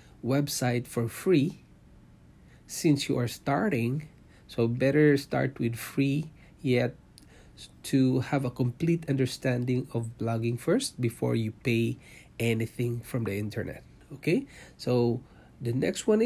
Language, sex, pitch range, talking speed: English, male, 115-145 Hz, 120 wpm